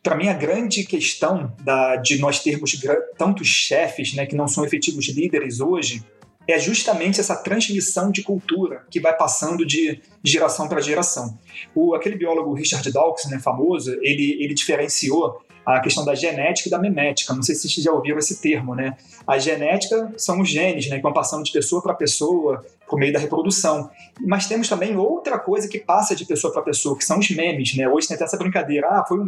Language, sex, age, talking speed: Portuguese, male, 30-49, 195 wpm